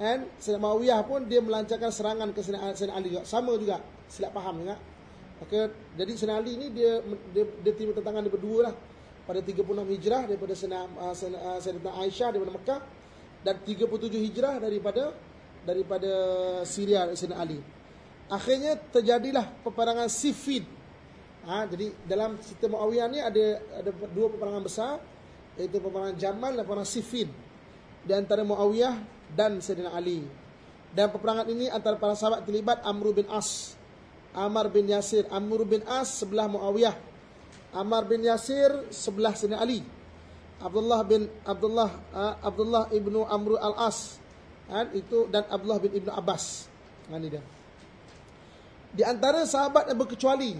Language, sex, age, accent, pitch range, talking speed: English, male, 30-49, Indonesian, 195-230 Hz, 140 wpm